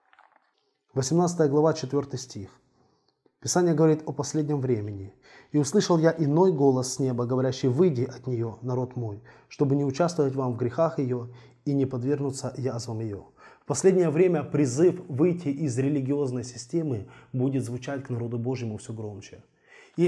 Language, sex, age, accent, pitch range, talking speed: Russian, male, 20-39, native, 125-160 Hz, 150 wpm